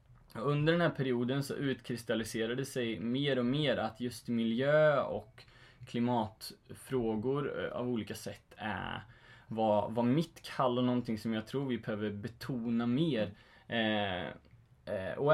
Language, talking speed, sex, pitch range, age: Swedish, 125 wpm, male, 110-130 Hz, 20-39